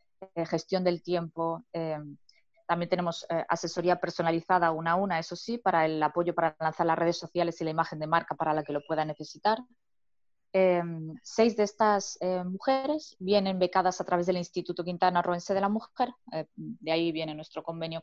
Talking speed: 190 wpm